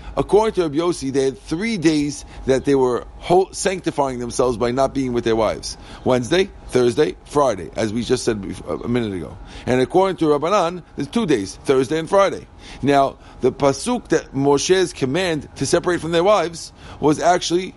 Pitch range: 130-180 Hz